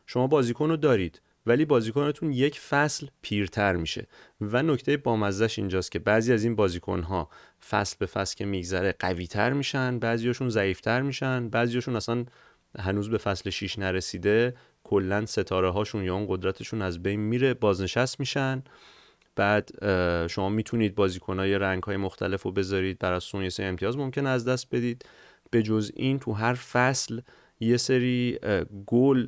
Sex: male